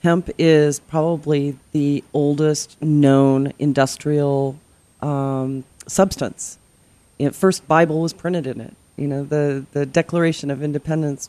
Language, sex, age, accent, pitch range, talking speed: English, female, 40-59, American, 140-160 Hz, 135 wpm